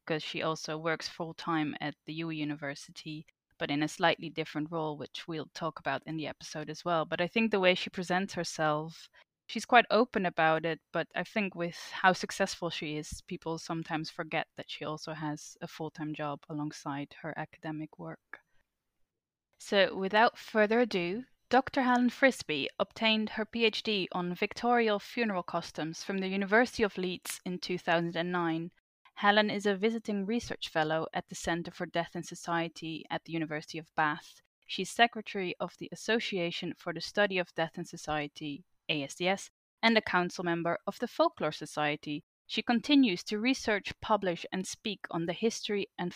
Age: 10-29